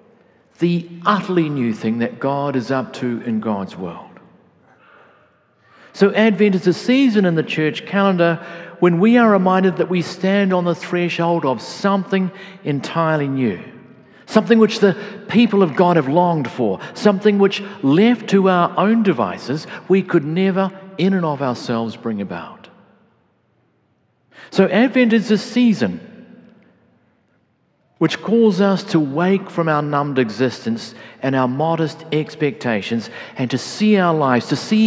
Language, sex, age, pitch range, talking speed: English, male, 50-69, 145-205 Hz, 145 wpm